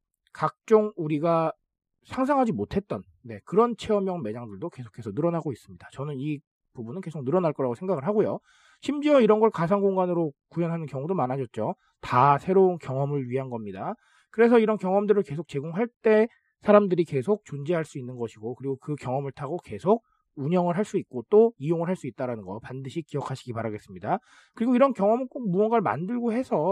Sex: male